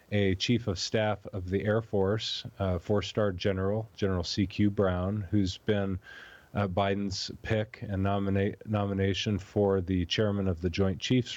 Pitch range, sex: 95-115 Hz, male